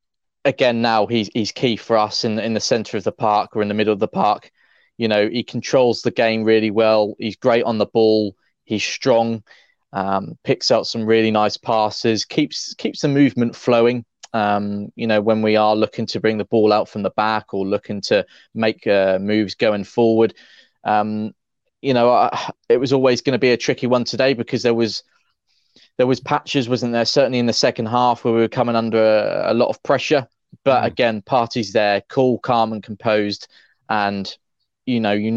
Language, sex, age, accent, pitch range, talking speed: English, male, 20-39, British, 100-115 Hz, 205 wpm